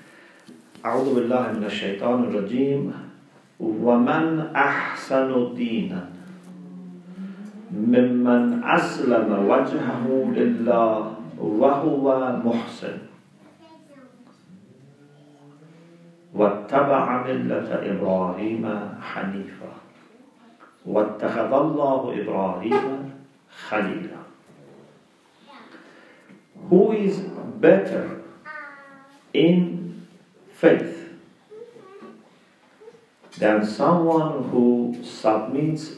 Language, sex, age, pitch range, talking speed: English, male, 50-69, 105-170 Hz, 55 wpm